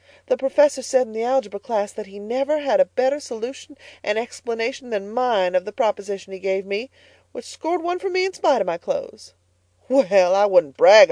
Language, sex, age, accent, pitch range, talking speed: English, female, 40-59, American, 180-275 Hz, 205 wpm